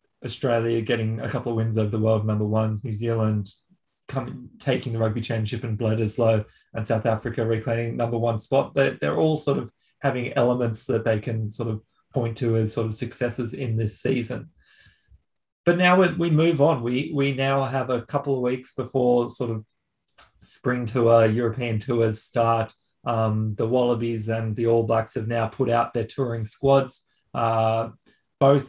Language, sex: English, male